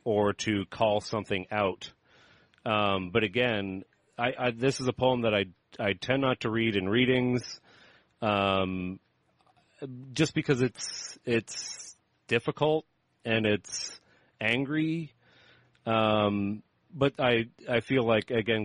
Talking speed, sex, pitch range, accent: 125 wpm, male, 95-115 Hz, American